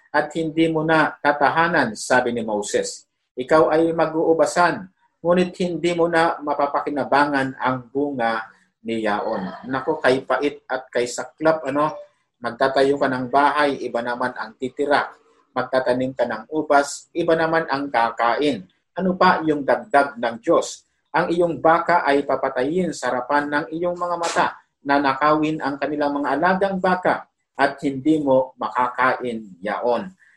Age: 50-69